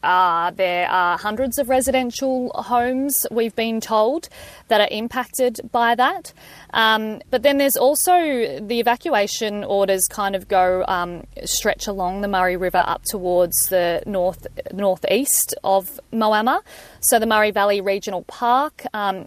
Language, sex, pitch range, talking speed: English, female, 185-225 Hz, 145 wpm